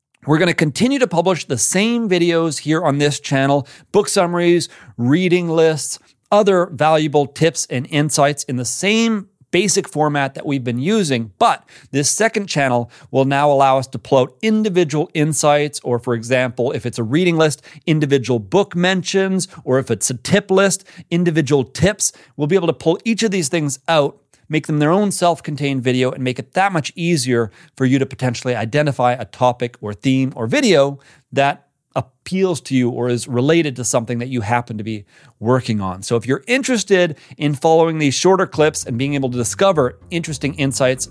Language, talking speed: English, 185 wpm